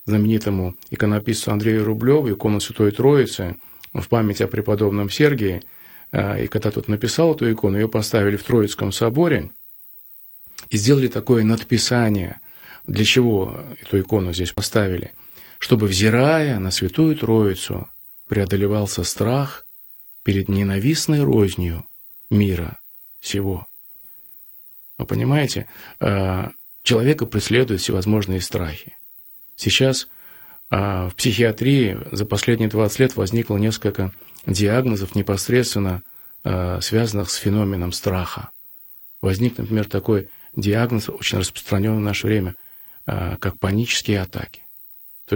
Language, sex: Russian, male